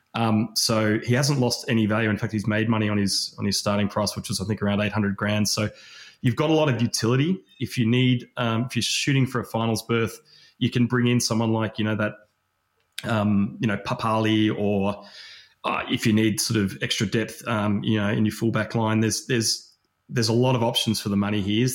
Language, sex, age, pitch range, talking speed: English, male, 20-39, 105-125 Hz, 230 wpm